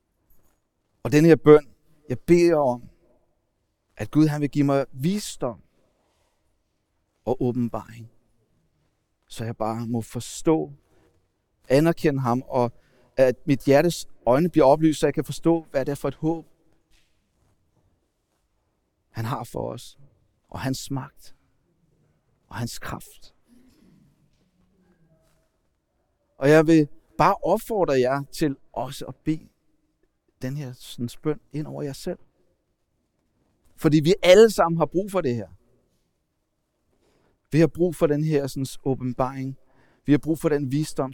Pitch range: 120-155 Hz